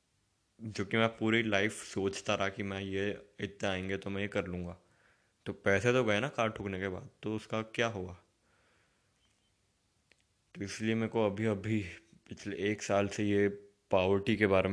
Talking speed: 180 wpm